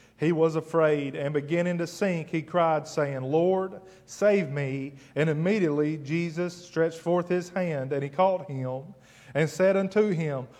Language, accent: English, American